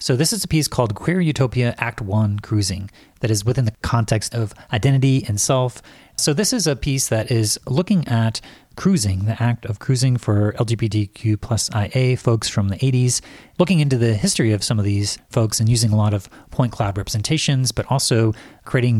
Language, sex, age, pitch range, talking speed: English, male, 30-49, 105-130 Hz, 195 wpm